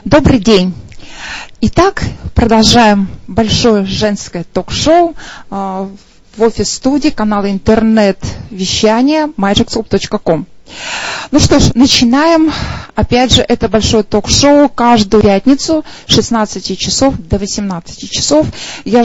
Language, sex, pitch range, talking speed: Russian, female, 205-245 Hz, 95 wpm